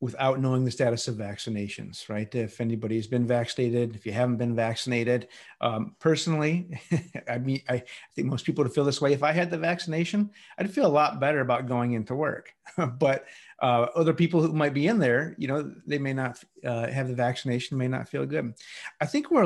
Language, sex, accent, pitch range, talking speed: English, male, American, 125-155 Hz, 205 wpm